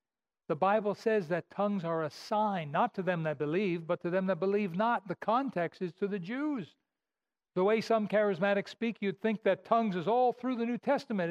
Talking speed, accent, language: 210 wpm, American, English